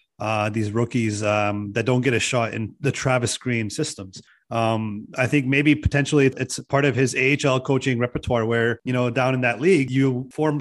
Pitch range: 125-165 Hz